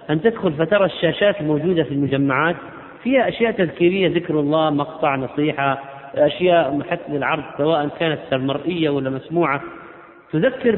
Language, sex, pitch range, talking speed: Arabic, male, 150-215 Hz, 130 wpm